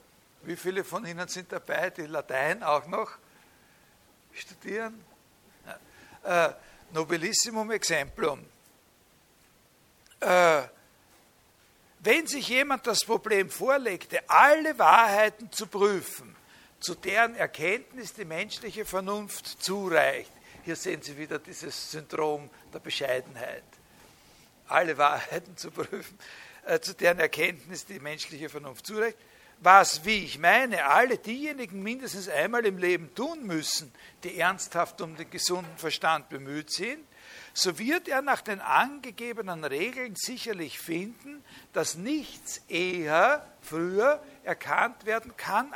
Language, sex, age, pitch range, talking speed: German, male, 60-79, 175-245 Hz, 115 wpm